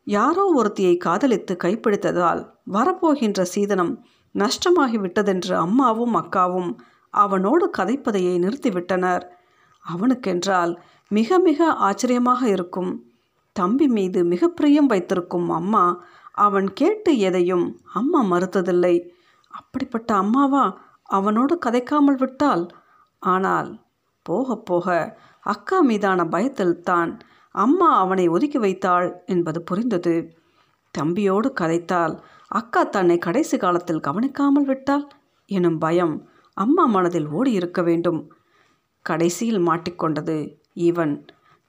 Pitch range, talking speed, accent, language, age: 175-260 Hz, 90 wpm, native, Tamil, 50-69